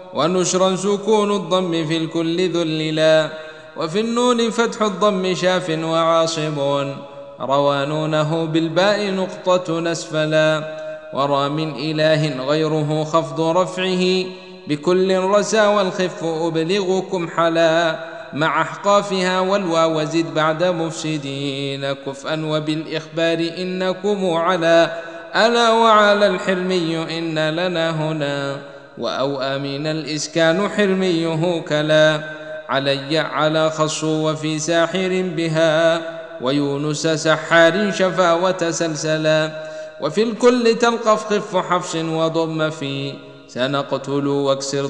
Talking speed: 90 wpm